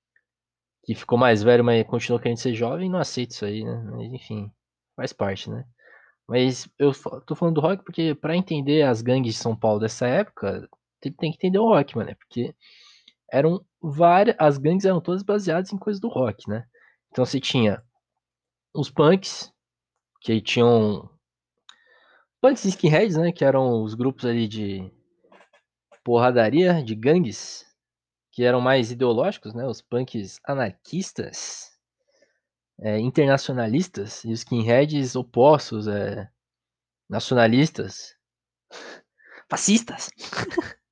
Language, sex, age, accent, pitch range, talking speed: Portuguese, male, 20-39, Brazilian, 115-165 Hz, 135 wpm